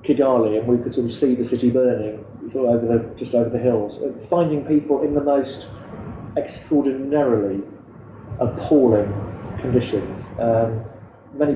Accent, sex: British, male